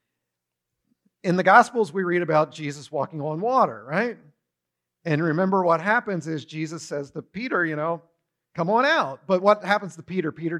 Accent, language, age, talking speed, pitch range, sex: American, English, 50-69, 175 wpm, 150-205 Hz, male